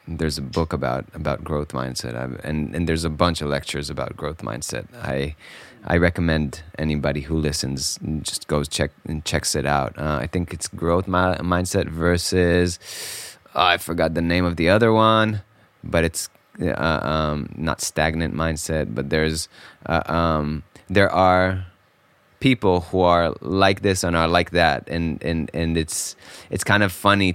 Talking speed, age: 170 wpm, 20-39